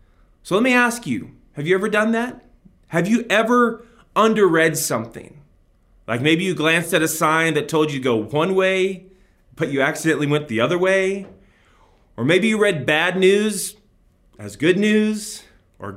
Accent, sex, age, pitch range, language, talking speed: American, male, 30-49, 125-190 Hz, English, 175 wpm